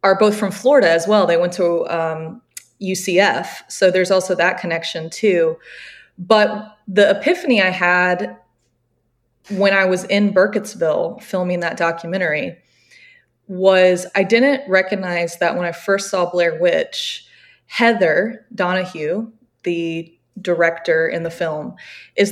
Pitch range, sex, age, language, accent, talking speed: 165-200 Hz, female, 20-39, English, American, 130 wpm